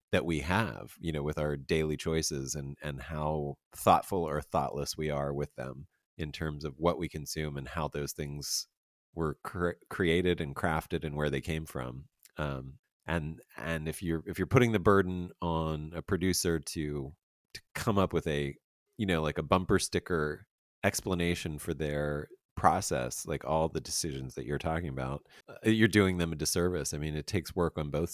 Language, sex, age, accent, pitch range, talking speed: English, male, 30-49, American, 75-90 Hz, 190 wpm